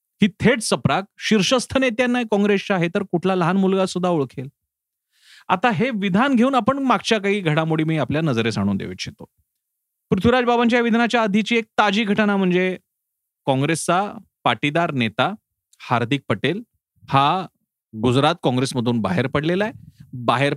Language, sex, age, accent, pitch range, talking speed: Marathi, male, 30-49, native, 135-185 Hz, 100 wpm